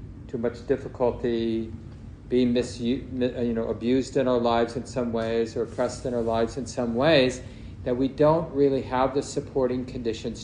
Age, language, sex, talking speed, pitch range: 50-69, English, male, 170 wpm, 110-125 Hz